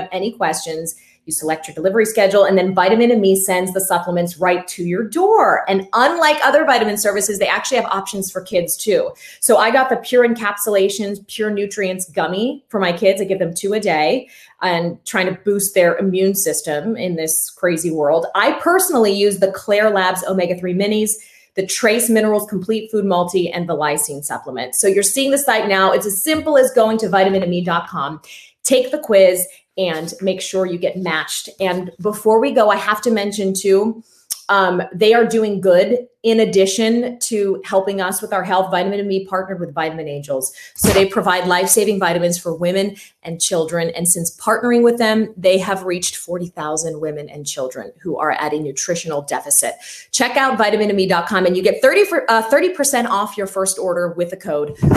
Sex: female